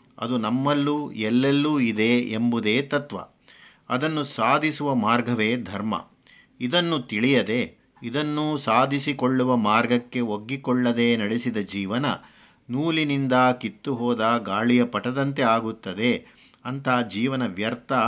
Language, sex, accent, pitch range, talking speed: Kannada, male, native, 115-140 Hz, 90 wpm